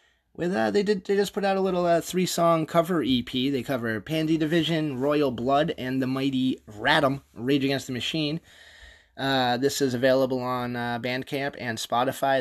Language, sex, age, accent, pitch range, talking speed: English, male, 20-39, American, 115-145 Hz, 180 wpm